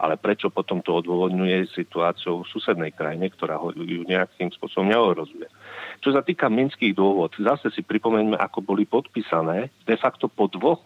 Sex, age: male, 40-59